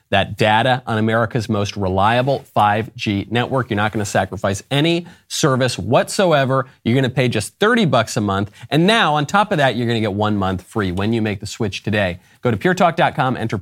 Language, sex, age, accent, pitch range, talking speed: English, male, 30-49, American, 105-155 Hz, 210 wpm